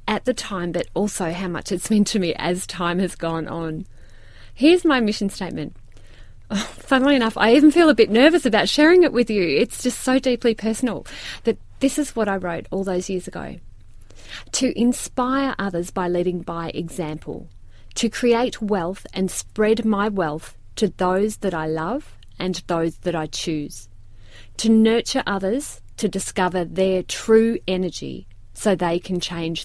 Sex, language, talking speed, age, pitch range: female, English, 170 wpm, 30-49, 165-235 Hz